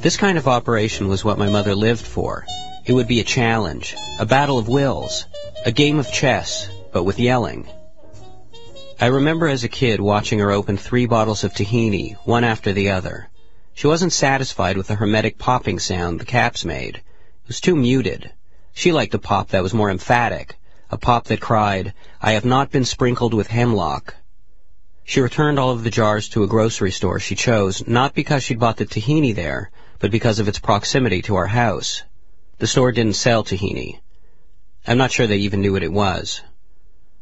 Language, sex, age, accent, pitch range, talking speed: English, male, 40-59, American, 100-125 Hz, 190 wpm